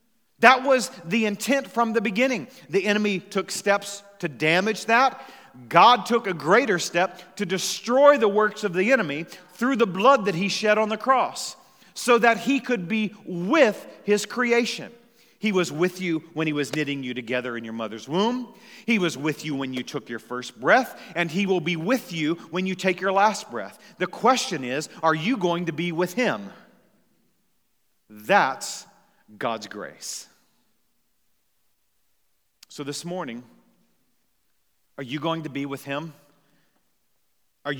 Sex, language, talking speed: male, English, 165 wpm